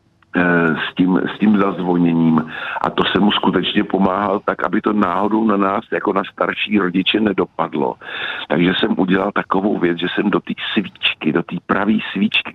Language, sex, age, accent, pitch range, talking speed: Czech, male, 50-69, native, 80-100 Hz, 170 wpm